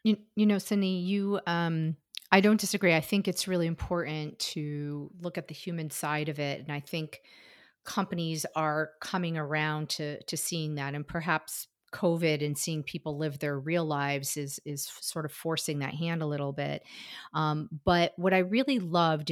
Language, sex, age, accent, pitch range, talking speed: English, female, 40-59, American, 150-175 Hz, 180 wpm